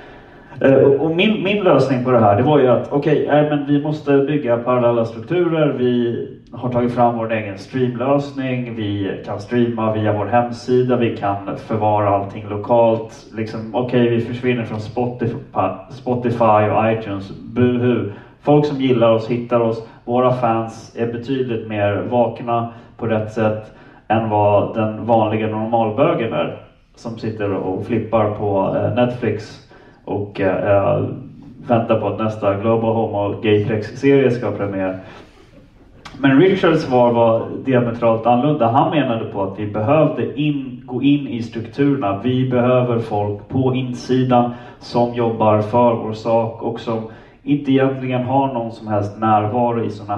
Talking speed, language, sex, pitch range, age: 150 wpm, Swedish, male, 110-125 Hz, 30-49